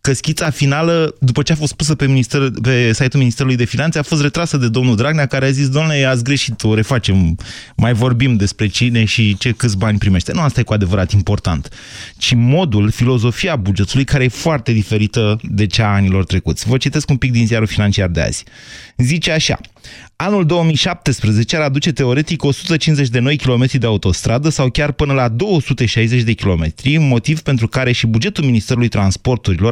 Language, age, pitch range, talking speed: Romanian, 20-39, 110-145 Hz, 185 wpm